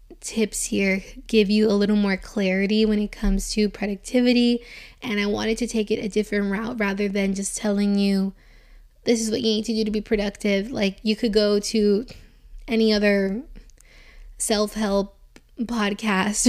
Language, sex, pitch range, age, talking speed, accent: English, female, 200-220 Hz, 20-39, 165 wpm, American